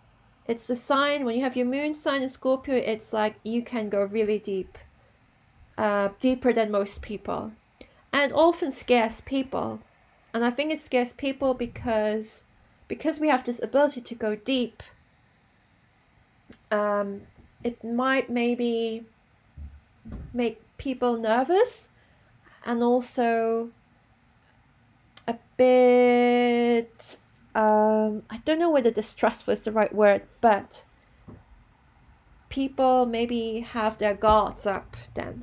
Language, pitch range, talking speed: English, 215-270 Hz, 120 wpm